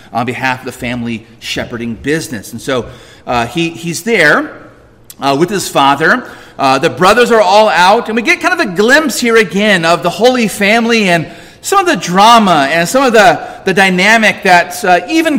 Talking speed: 195 wpm